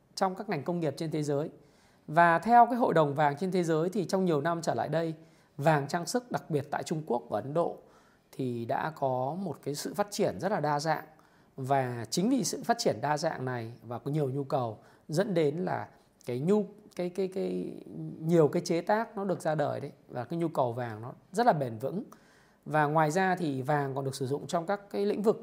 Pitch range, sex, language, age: 150-200 Hz, male, Vietnamese, 20-39